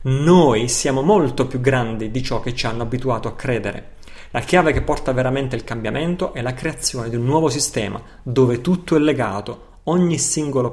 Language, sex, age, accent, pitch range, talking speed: Italian, male, 30-49, native, 120-150 Hz, 185 wpm